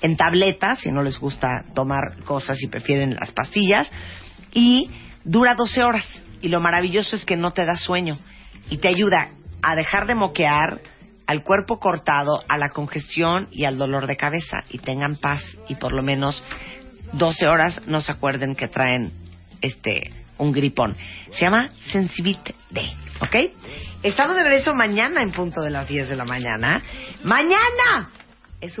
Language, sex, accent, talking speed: Spanish, female, Mexican, 165 wpm